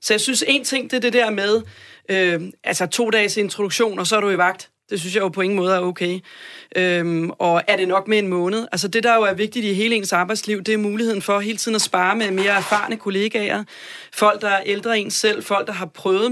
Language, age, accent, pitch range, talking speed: Danish, 30-49, native, 190-220 Hz, 255 wpm